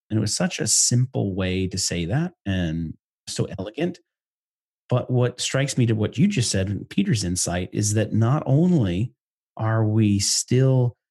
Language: English